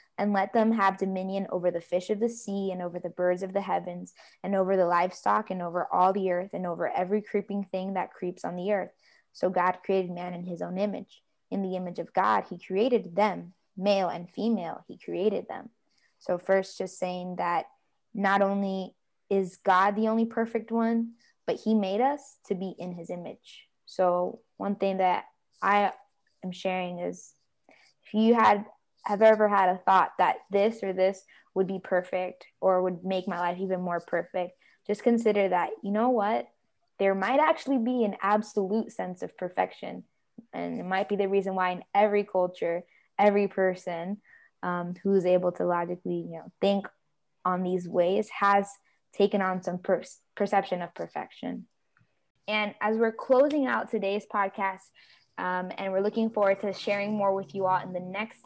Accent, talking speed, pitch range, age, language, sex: American, 185 wpm, 180-205 Hz, 20-39, English, female